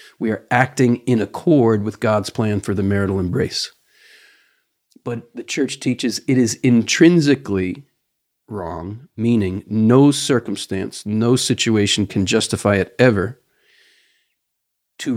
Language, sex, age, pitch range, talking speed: English, male, 40-59, 110-150 Hz, 120 wpm